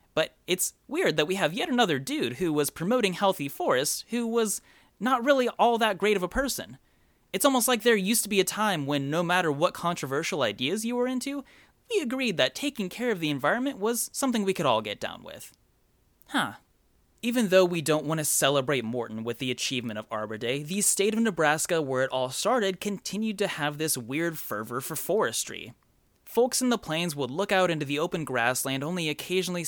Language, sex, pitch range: English, male, 135-205 Hz